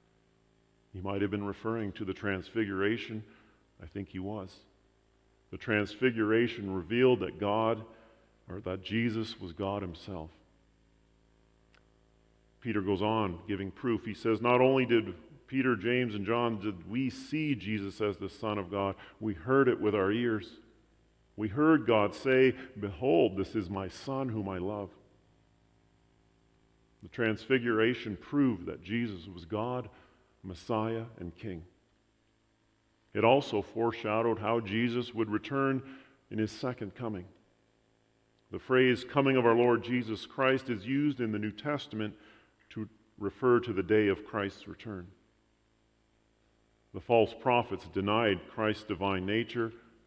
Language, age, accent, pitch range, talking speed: English, 50-69, American, 95-115 Hz, 135 wpm